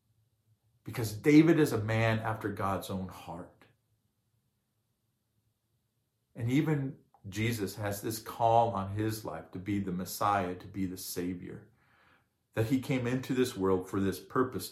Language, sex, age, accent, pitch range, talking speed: English, male, 50-69, American, 100-125 Hz, 145 wpm